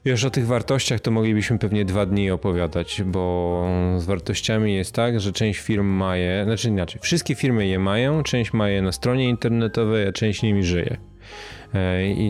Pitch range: 95-115 Hz